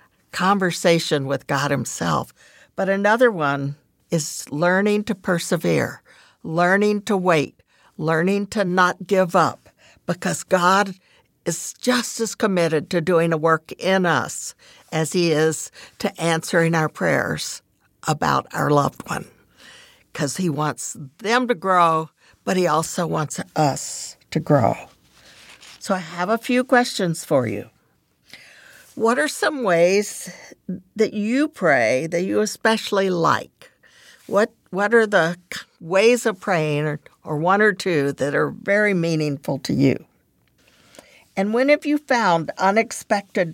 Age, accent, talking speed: 60-79, American, 135 wpm